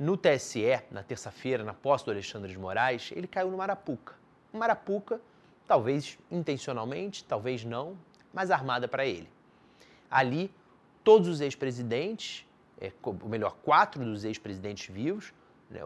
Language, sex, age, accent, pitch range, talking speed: Portuguese, male, 30-49, Brazilian, 115-175 Hz, 130 wpm